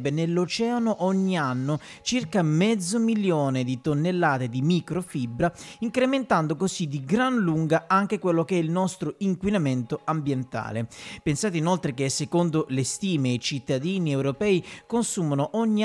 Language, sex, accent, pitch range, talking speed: Italian, male, native, 140-195 Hz, 130 wpm